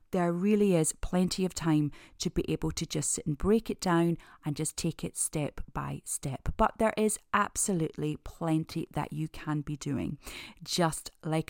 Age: 30-49